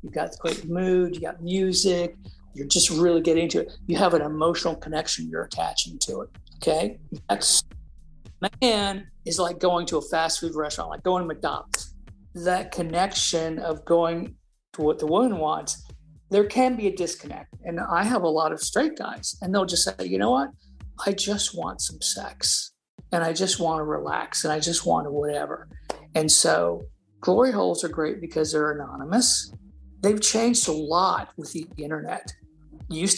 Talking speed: 185 wpm